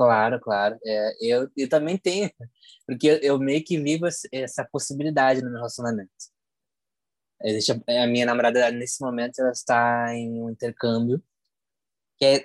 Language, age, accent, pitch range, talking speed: Portuguese, 20-39, Brazilian, 115-145 Hz, 150 wpm